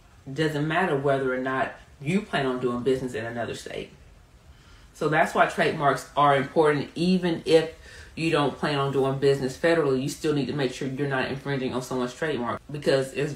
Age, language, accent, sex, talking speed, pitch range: 30-49, English, American, female, 190 wpm, 140-185 Hz